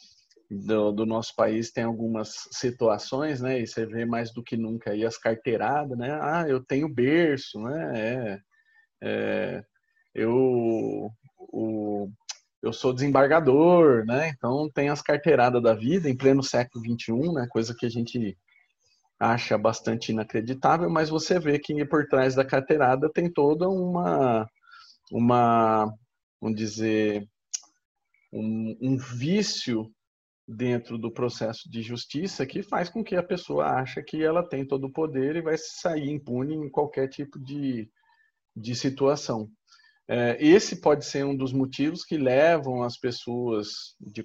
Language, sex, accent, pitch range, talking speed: Portuguese, male, Brazilian, 115-155 Hz, 140 wpm